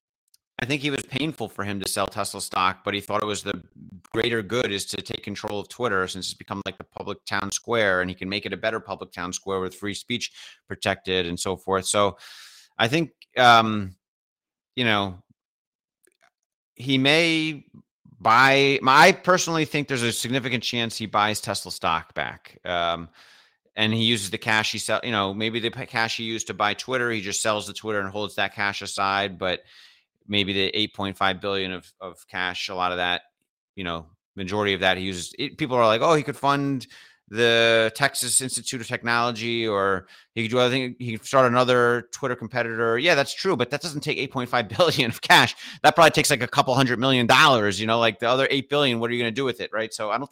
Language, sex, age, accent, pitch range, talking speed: English, male, 30-49, American, 100-130 Hz, 215 wpm